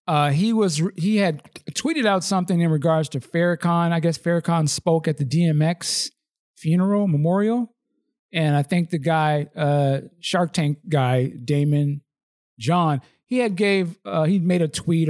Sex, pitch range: male, 145-190 Hz